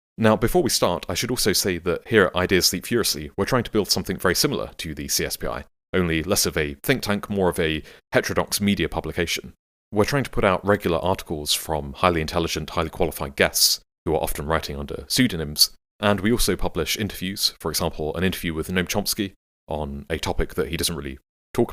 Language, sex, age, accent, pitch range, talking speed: English, male, 30-49, British, 80-100 Hz, 205 wpm